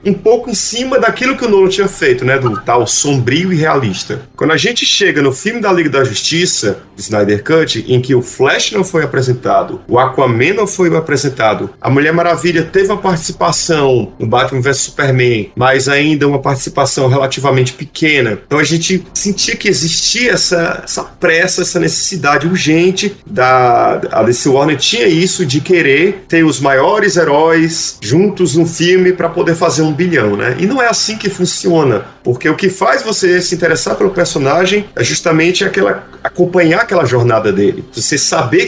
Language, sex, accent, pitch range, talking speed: Portuguese, male, Brazilian, 135-185 Hz, 170 wpm